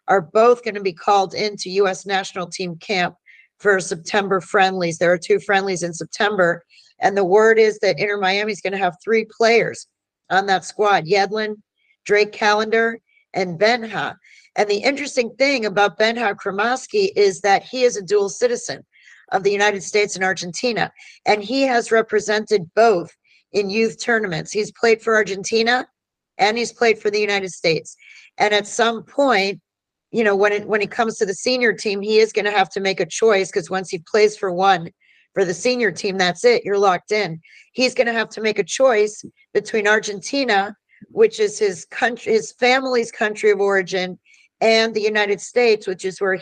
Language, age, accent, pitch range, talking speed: English, 50-69, American, 195-230 Hz, 180 wpm